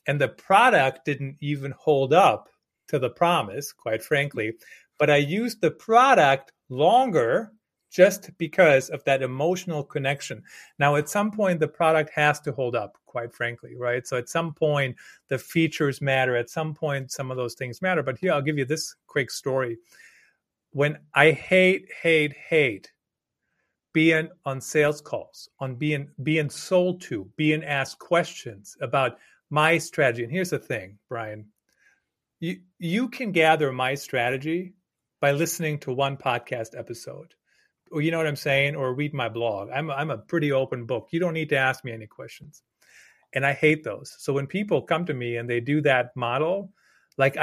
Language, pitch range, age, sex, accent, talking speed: English, 130-160 Hz, 40-59, male, American, 170 wpm